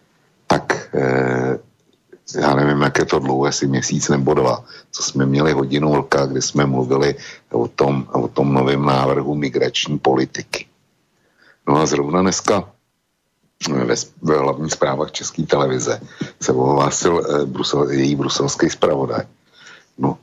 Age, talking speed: 60-79, 135 wpm